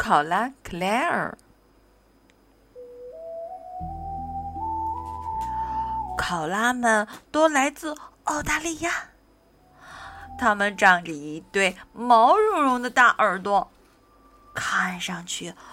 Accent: native